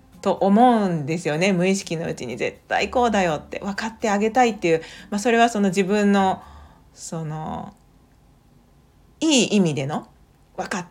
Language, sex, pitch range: Japanese, female, 170-235 Hz